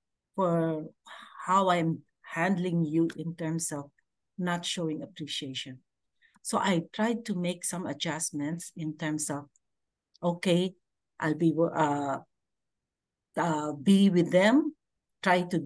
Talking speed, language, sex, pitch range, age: 110 wpm, English, female, 155-195 Hz, 50-69